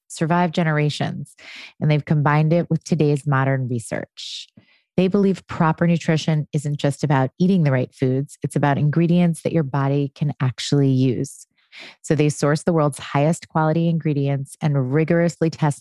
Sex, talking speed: female, 155 wpm